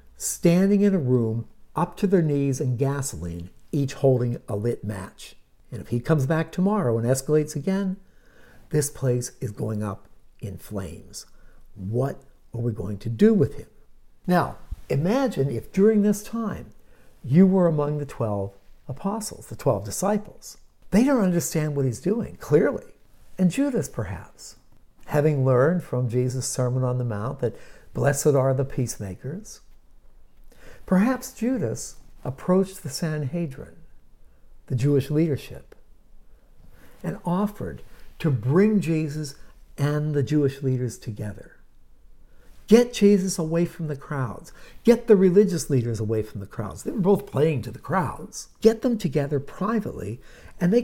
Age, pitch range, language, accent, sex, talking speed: 60-79, 120-190 Hz, English, American, male, 145 wpm